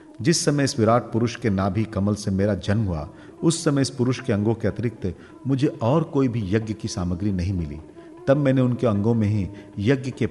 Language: Hindi